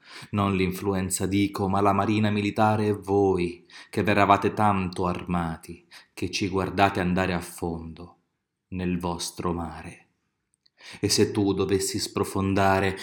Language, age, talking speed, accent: Italian, 30-49, 125 wpm, native